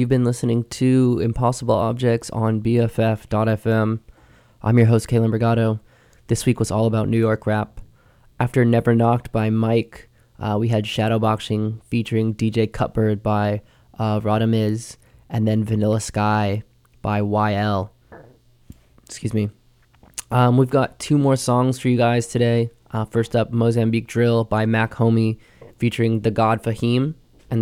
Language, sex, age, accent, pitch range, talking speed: English, male, 20-39, American, 110-120 Hz, 150 wpm